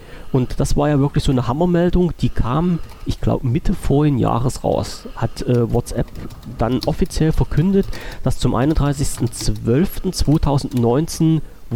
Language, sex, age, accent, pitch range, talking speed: German, male, 40-59, German, 120-150 Hz, 130 wpm